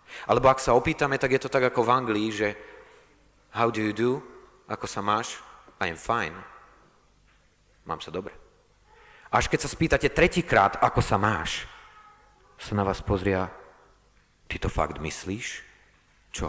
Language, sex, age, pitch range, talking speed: Slovak, male, 30-49, 90-125 Hz, 155 wpm